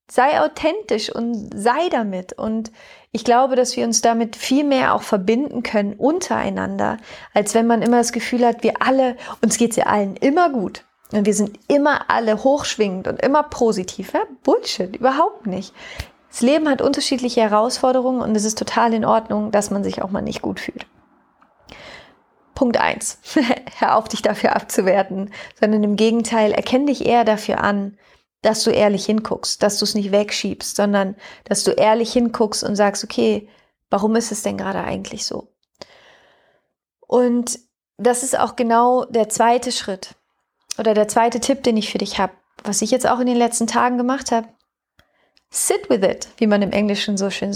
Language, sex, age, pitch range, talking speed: German, female, 30-49, 210-250 Hz, 180 wpm